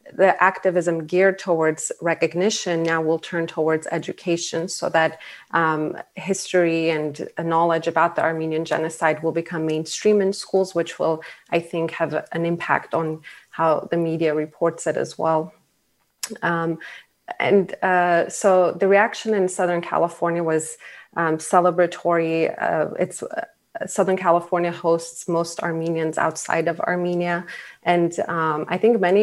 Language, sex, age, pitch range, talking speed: English, female, 30-49, 165-175 Hz, 140 wpm